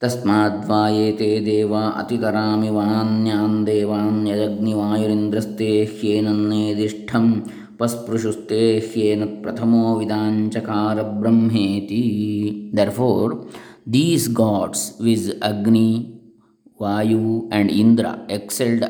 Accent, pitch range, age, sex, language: Indian, 105-115 Hz, 20-39, male, English